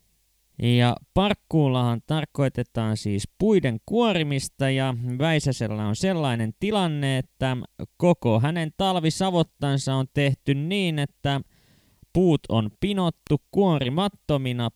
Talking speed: 95 wpm